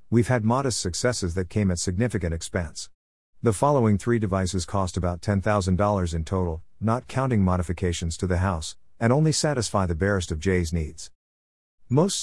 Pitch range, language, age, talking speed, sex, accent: 85-115 Hz, English, 50-69, 160 wpm, male, American